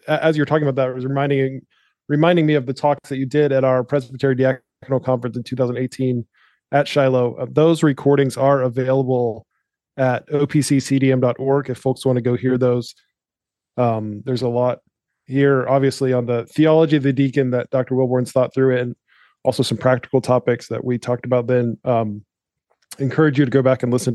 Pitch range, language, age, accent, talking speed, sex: 125-145 Hz, English, 20-39, American, 185 wpm, male